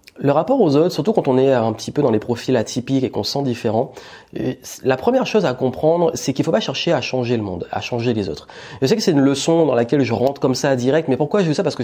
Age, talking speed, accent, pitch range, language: 30-49, 295 wpm, French, 115-150 Hz, French